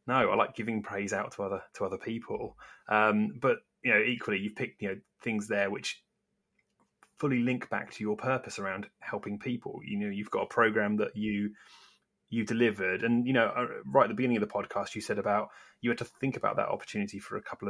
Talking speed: 225 wpm